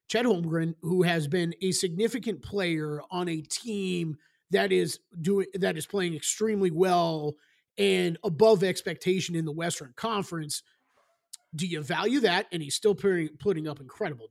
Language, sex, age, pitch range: English, male, 30-49, 175-230 Hz